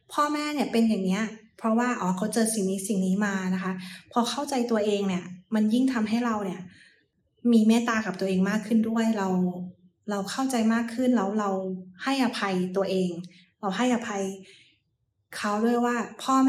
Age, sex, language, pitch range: 20-39, female, Thai, 190-230 Hz